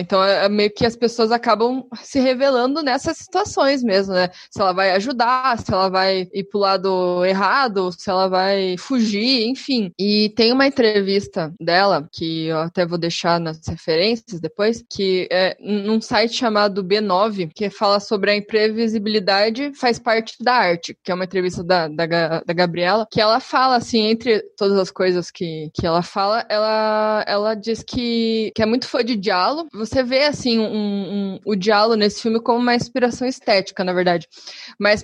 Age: 20-39